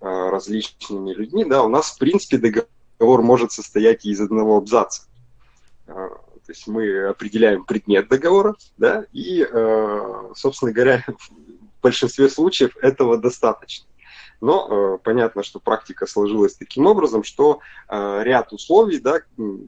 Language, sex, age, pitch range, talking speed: Russian, male, 20-39, 100-150 Hz, 120 wpm